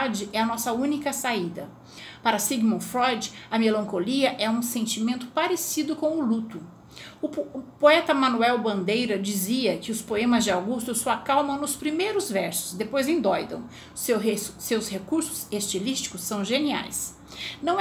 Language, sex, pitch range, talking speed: Portuguese, female, 220-285 Hz, 135 wpm